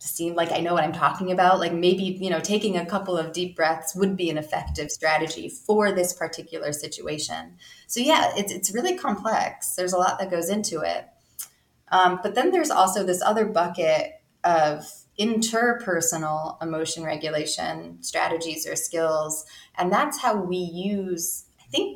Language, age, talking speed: English, 20-39, 170 wpm